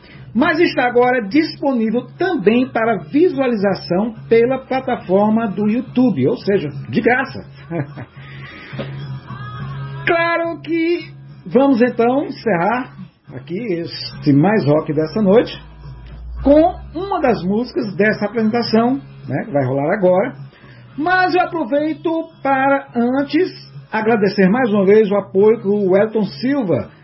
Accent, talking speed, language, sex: Brazilian, 115 wpm, Portuguese, male